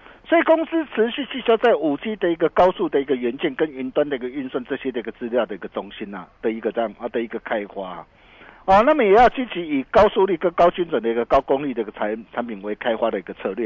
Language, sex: Chinese, male